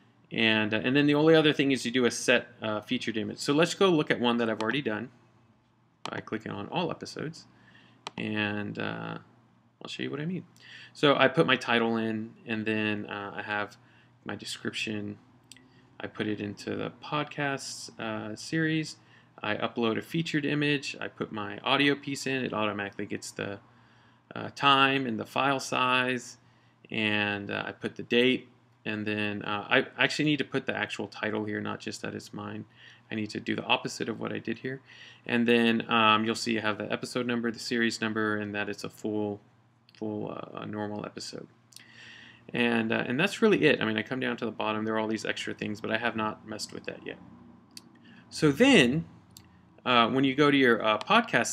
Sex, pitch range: male, 105-125 Hz